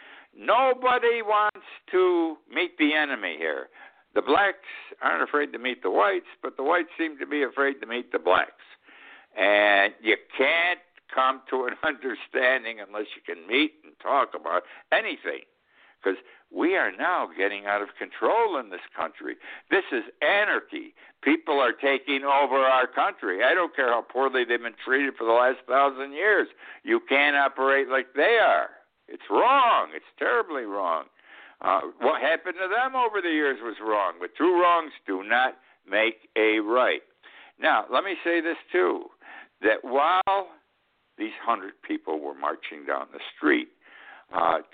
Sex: male